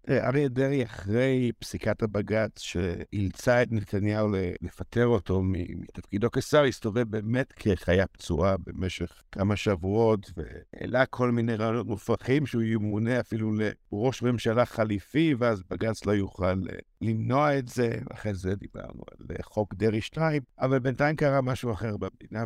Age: 60-79